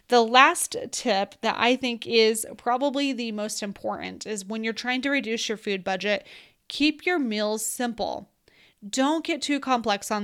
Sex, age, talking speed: female, 20-39, 170 wpm